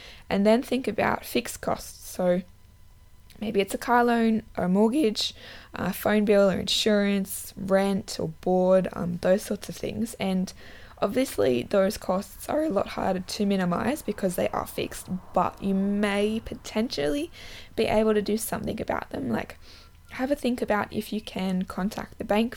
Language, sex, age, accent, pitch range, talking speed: English, female, 20-39, Australian, 175-215 Hz, 165 wpm